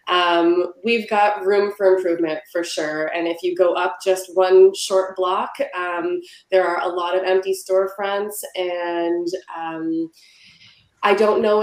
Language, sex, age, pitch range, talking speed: English, female, 20-39, 170-200 Hz, 155 wpm